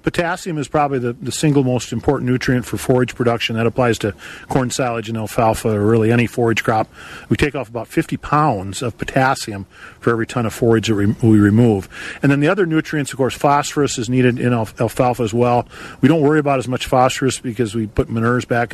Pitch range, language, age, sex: 115-140 Hz, English, 40-59, male